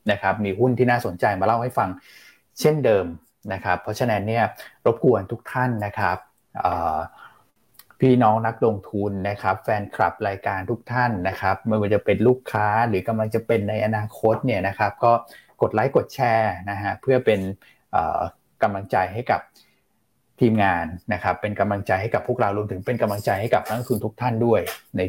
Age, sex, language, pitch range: 20-39, male, Thai, 95-120 Hz